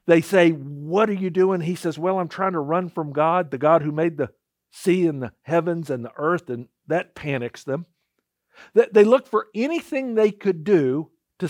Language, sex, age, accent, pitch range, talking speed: English, male, 50-69, American, 120-185 Hz, 205 wpm